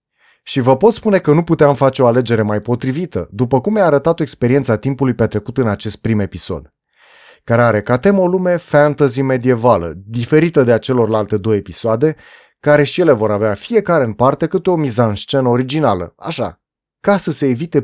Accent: native